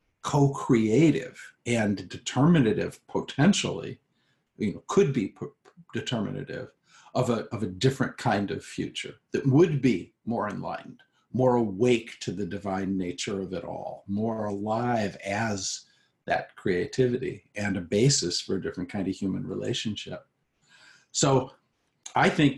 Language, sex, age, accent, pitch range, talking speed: English, male, 50-69, American, 110-135 Hz, 130 wpm